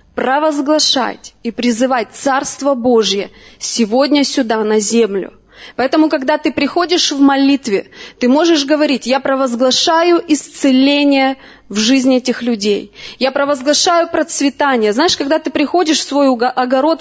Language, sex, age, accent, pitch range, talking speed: Russian, female, 20-39, native, 260-330 Hz, 125 wpm